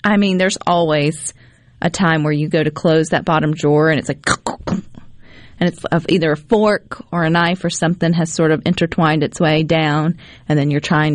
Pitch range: 155-195 Hz